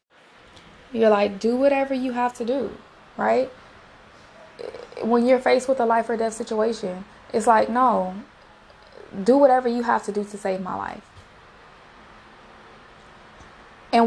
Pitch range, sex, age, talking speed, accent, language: 205-245 Hz, female, 20-39, 135 wpm, American, English